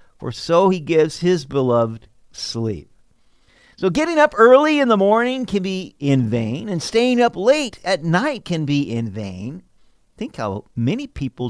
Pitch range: 115-185 Hz